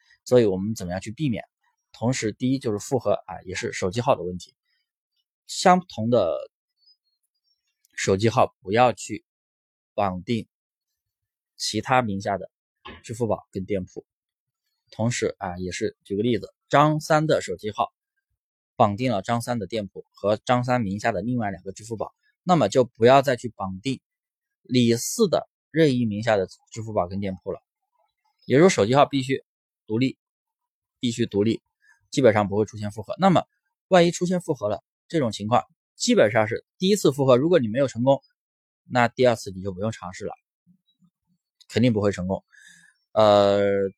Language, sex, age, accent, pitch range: Chinese, male, 20-39, native, 100-155 Hz